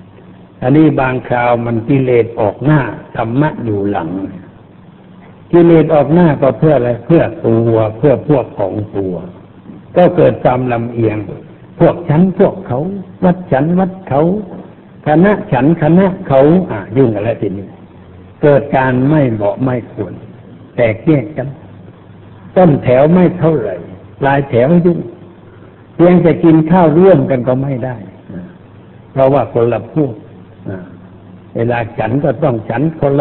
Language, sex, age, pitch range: Thai, male, 60-79, 110-145 Hz